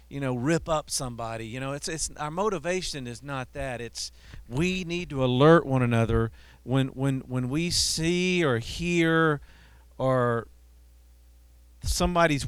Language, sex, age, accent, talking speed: English, male, 50-69, American, 145 wpm